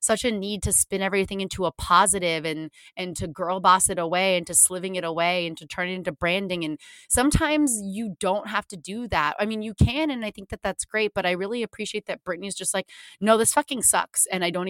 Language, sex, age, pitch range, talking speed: English, female, 30-49, 155-195 Hz, 245 wpm